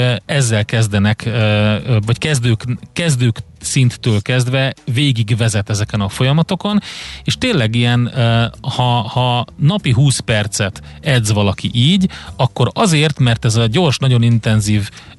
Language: Hungarian